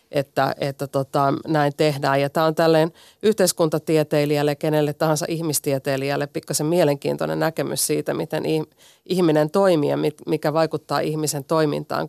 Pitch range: 145-170 Hz